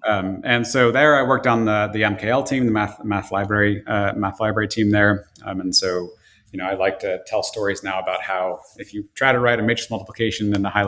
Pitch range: 100-125 Hz